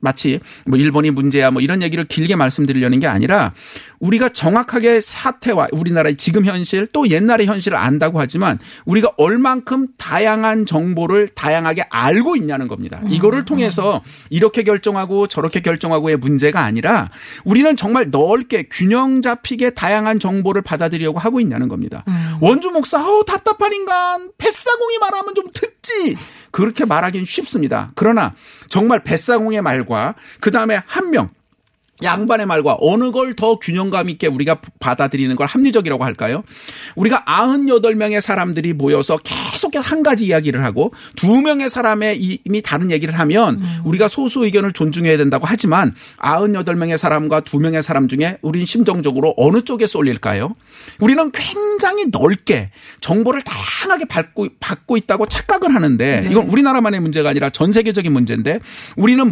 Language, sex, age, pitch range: Korean, male, 40-59, 160-240 Hz